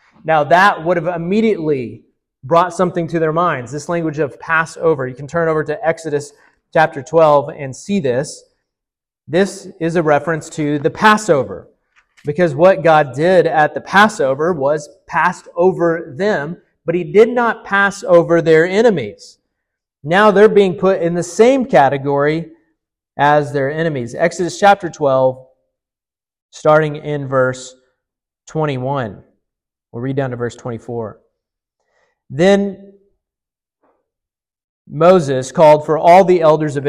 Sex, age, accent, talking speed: male, 30-49, American, 135 wpm